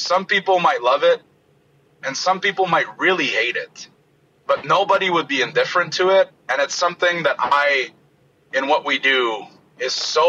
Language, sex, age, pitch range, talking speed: English, male, 30-49, 150-195 Hz, 175 wpm